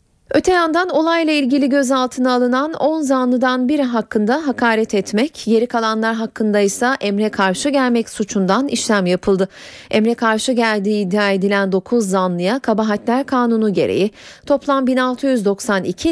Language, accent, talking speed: Turkish, native, 125 wpm